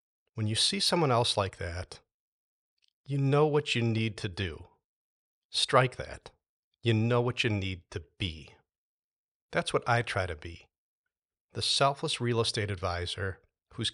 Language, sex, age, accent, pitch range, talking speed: English, male, 40-59, American, 95-120 Hz, 150 wpm